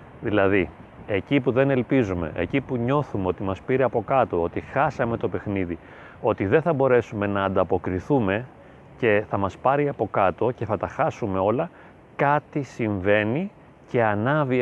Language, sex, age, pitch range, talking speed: Greek, male, 30-49, 105-140 Hz, 155 wpm